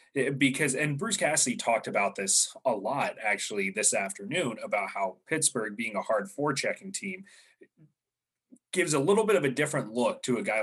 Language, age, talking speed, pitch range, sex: English, 30-49, 175 wpm, 110-175 Hz, male